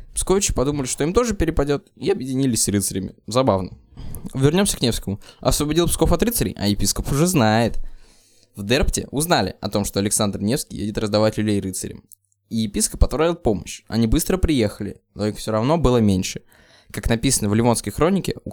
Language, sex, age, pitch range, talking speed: Russian, male, 20-39, 105-135 Hz, 170 wpm